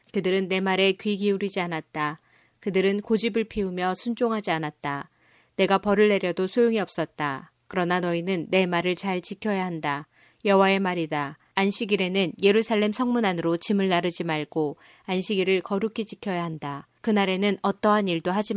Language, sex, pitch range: Korean, female, 170-205 Hz